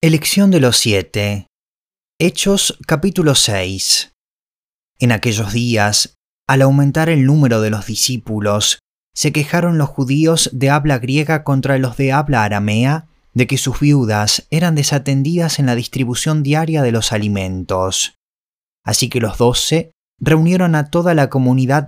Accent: Argentinian